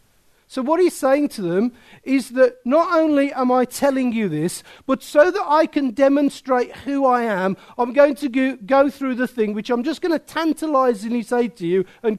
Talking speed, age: 215 wpm, 50-69